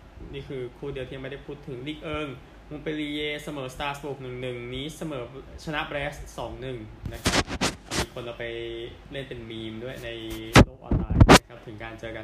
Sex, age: male, 20-39